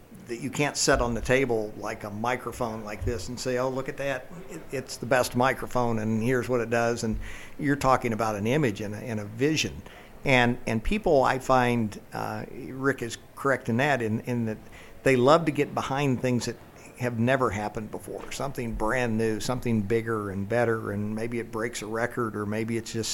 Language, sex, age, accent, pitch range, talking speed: English, male, 50-69, American, 110-125 Hz, 205 wpm